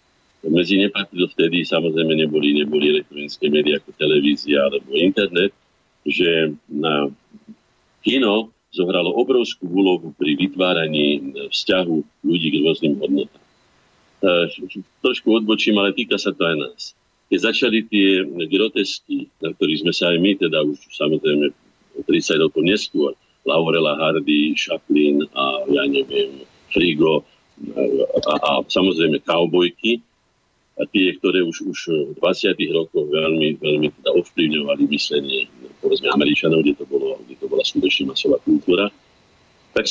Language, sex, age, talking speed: Slovak, male, 50-69, 125 wpm